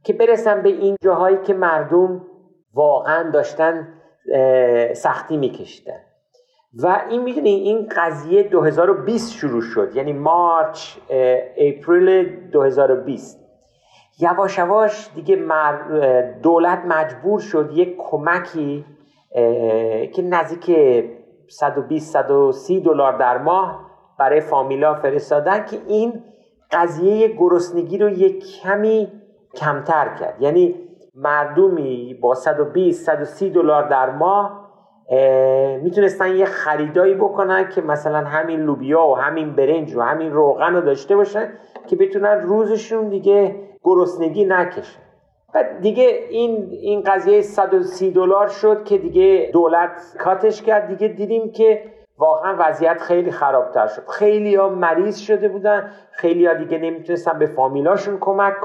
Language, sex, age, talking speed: Persian, male, 50-69, 115 wpm